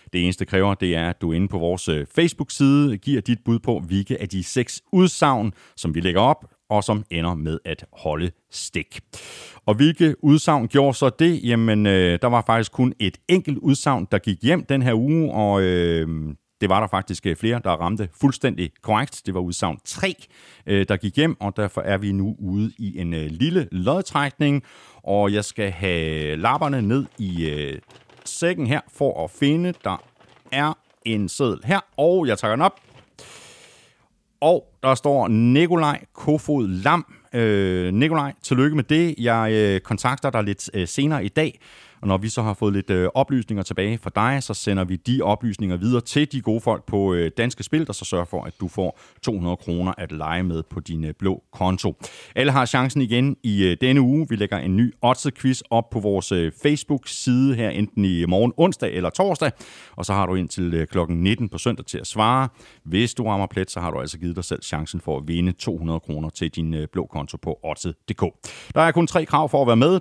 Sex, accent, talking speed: male, native, 195 wpm